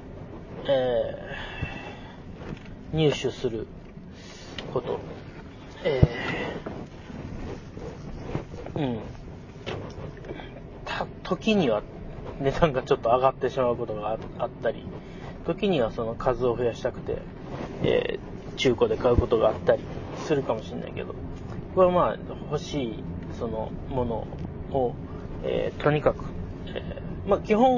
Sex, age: male, 30-49